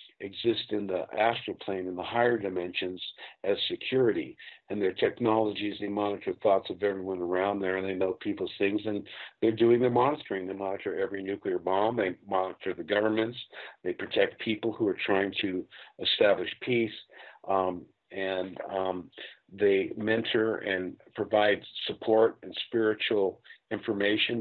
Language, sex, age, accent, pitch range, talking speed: English, male, 50-69, American, 95-115 Hz, 150 wpm